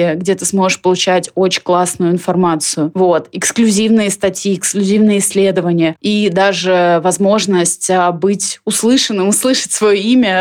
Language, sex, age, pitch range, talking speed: Russian, female, 20-39, 185-210 Hz, 115 wpm